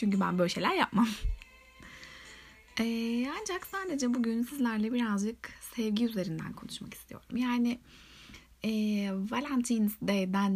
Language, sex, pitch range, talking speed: Turkish, female, 195-235 Hz, 110 wpm